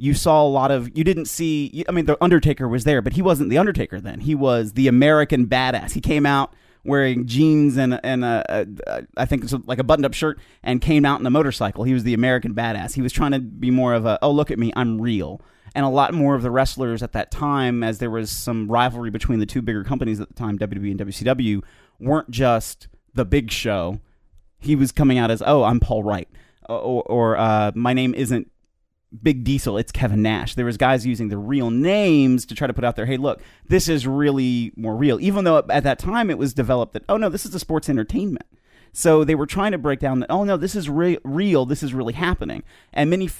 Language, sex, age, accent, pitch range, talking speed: English, male, 30-49, American, 120-150 Hz, 240 wpm